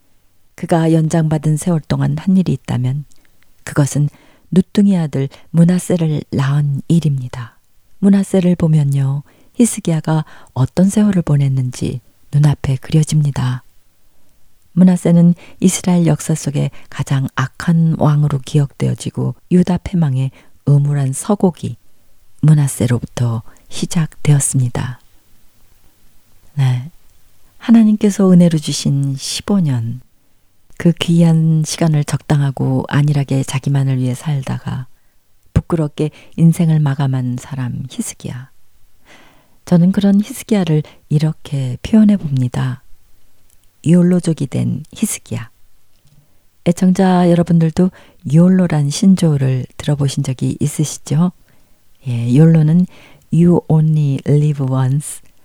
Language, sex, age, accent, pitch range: Korean, female, 40-59, native, 125-165 Hz